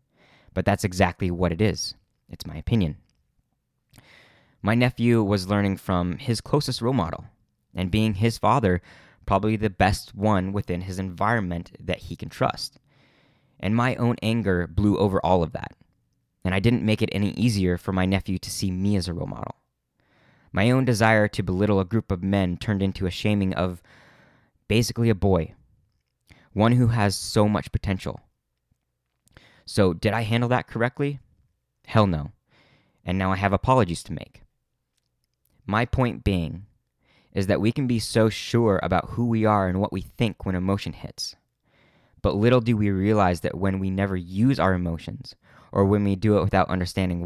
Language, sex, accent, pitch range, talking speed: English, male, American, 90-115 Hz, 175 wpm